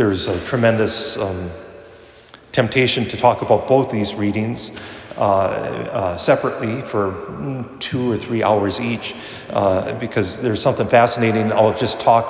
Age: 40-59